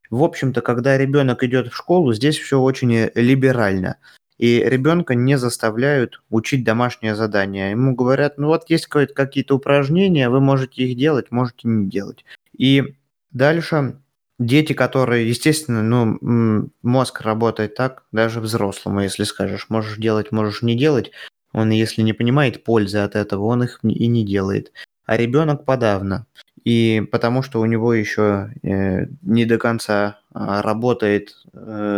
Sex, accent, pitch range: male, native, 105-130 Hz